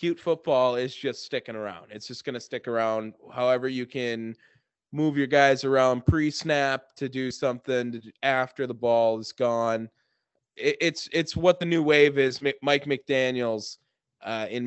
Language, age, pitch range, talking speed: English, 20-39, 120-165 Hz, 170 wpm